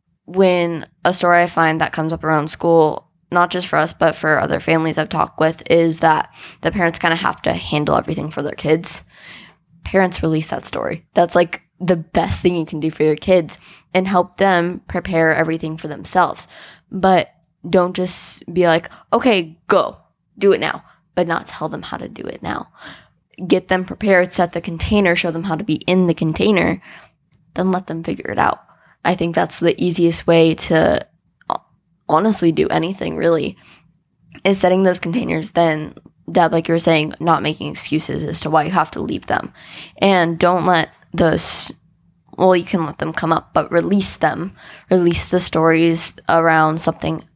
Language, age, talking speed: English, 10-29, 185 wpm